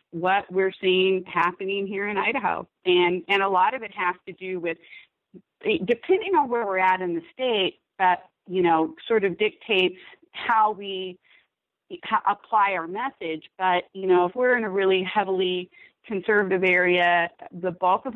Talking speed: 165 wpm